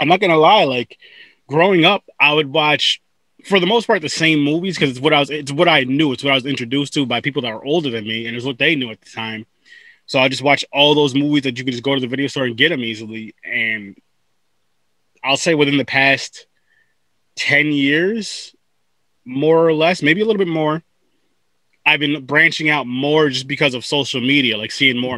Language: English